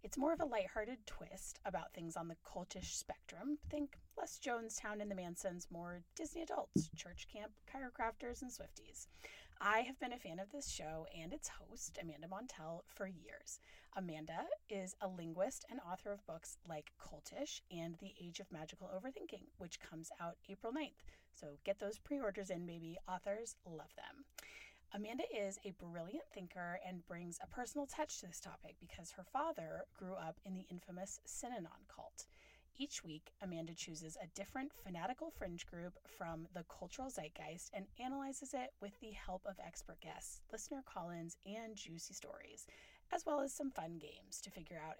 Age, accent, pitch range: 30-49, American, 170-250 Hz